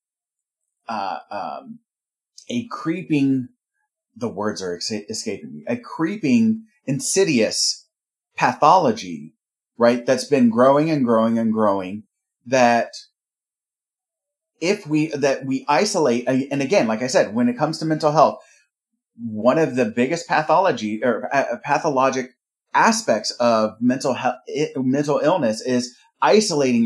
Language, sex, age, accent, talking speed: English, male, 30-49, American, 120 wpm